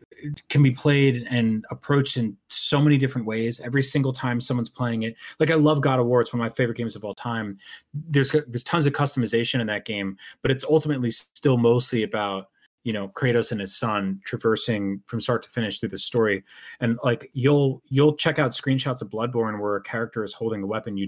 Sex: male